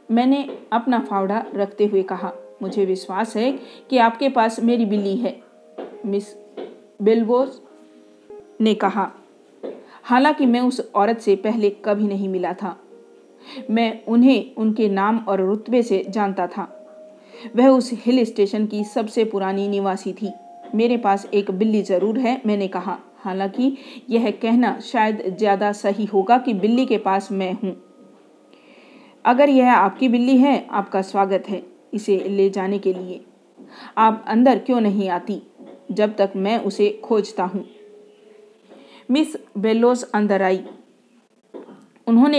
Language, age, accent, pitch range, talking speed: Hindi, 40-59, native, 195-240 Hz, 135 wpm